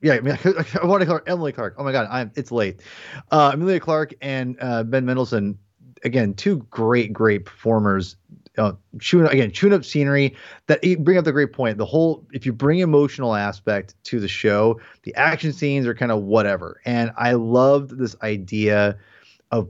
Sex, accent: male, American